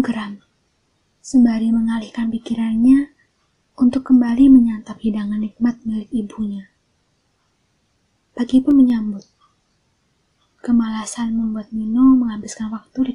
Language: Indonesian